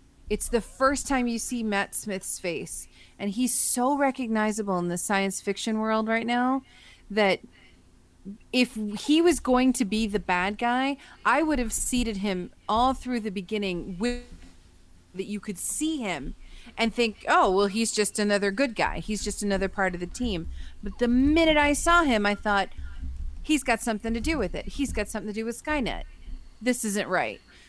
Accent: American